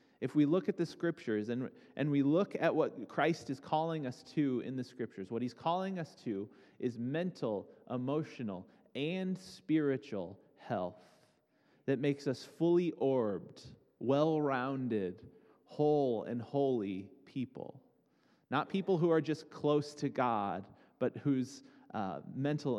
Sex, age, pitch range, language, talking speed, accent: male, 30-49, 115-145 Hz, English, 140 wpm, American